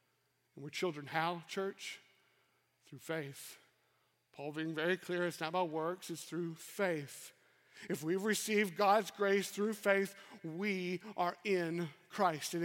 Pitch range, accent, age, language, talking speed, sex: 160-200 Hz, American, 50-69, English, 140 wpm, male